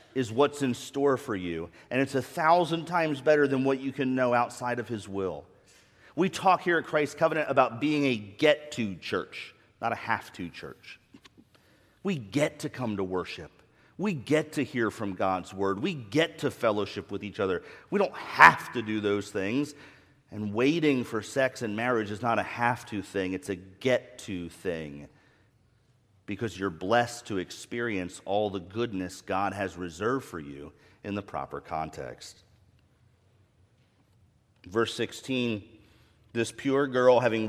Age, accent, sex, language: 40-59, American, male, English